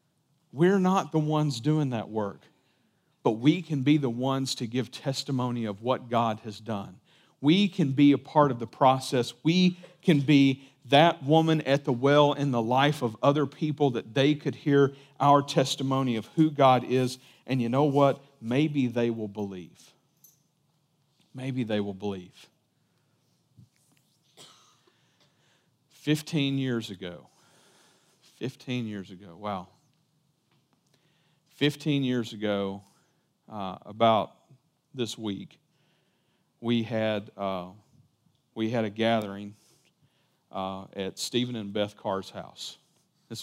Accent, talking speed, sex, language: American, 130 wpm, male, English